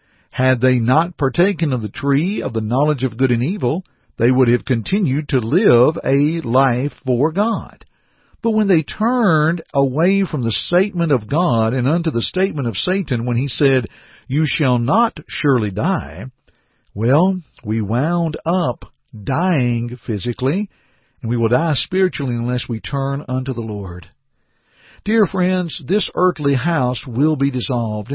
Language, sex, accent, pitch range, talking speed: English, male, American, 120-170 Hz, 155 wpm